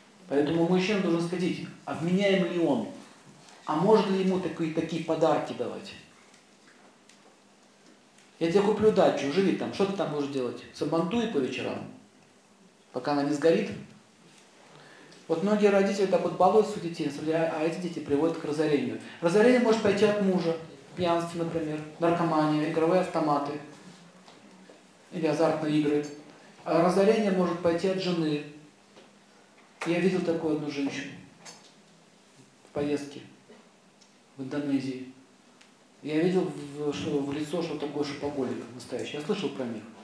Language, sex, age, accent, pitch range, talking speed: Russian, male, 40-59, native, 150-185 Hz, 130 wpm